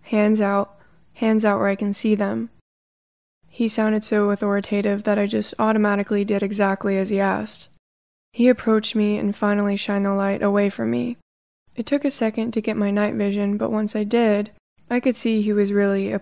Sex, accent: female, American